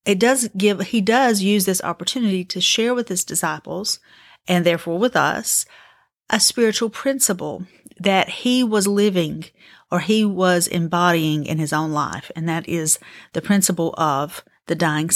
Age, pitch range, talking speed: 40-59, 170-215 Hz, 160 wpm